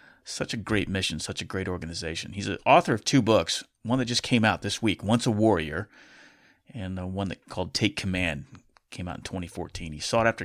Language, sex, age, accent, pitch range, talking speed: English, male, 30-49, American, 90-115 Hz, 220 wpm